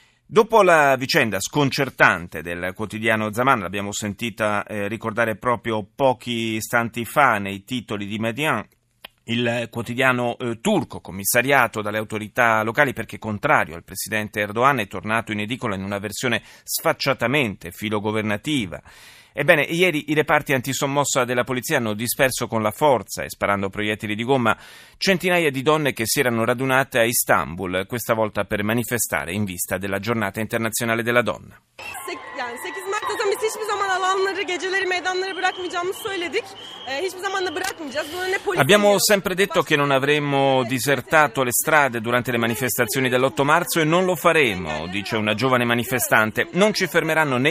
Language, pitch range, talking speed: Italian, 110-155 Hz, 130 wpm